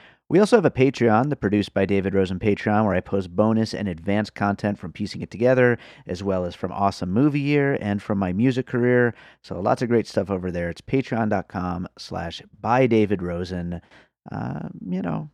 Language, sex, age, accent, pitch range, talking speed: English, male, 30-49, American, 90-110 Hz, 190 wpm